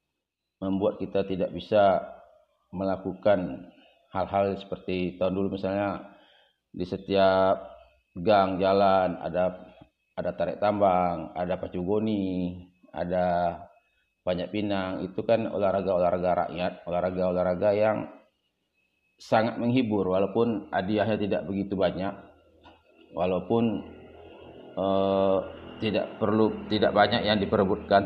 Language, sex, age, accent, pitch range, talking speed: Indonesian, male, 30-49, native, 90-105 Hz, 95 wpm